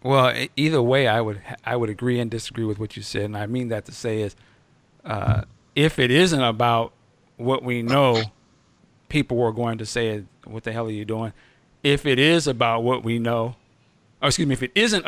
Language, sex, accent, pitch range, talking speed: English, male, American, 115-140 Hz, 210 wpm